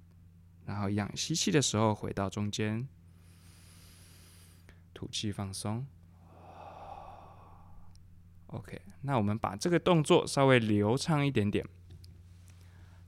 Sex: male